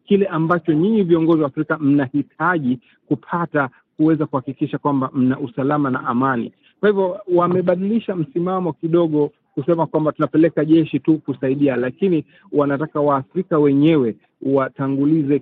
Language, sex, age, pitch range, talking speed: Swahili, male, 40-59, 140-165 Hz, 120 wpm